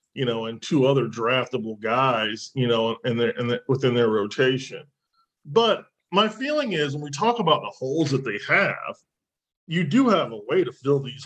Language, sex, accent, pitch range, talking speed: English, male, American, 130-190 Hz, 195 wpm